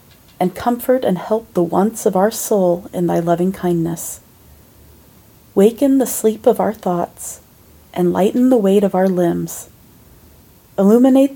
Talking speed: 135 wpm